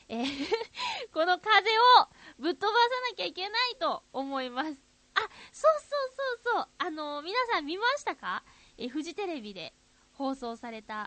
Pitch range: 230-355 Hz